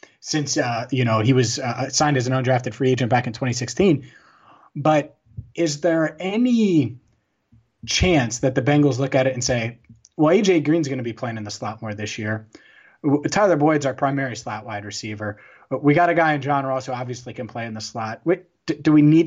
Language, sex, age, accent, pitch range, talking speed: English, male, 30-49, American, 115-145 Hz, 205 wpm